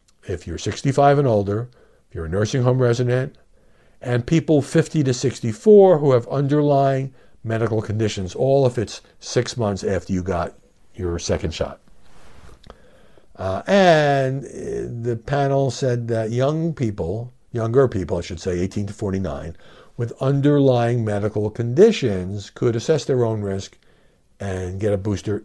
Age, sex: 60-79, male